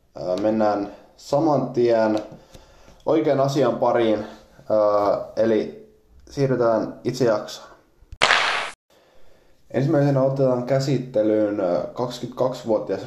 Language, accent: Finnish, native